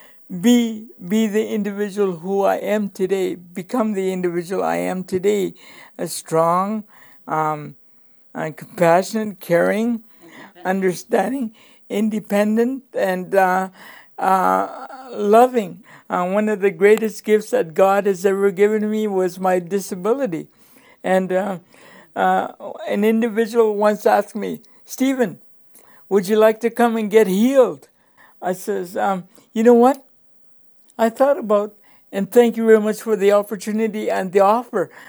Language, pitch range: English, 185-225 Hz